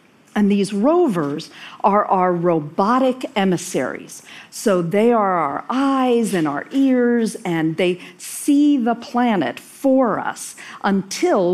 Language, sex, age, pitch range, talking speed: Arabic, female, 50-69, 185-255 Hz, 120 wpm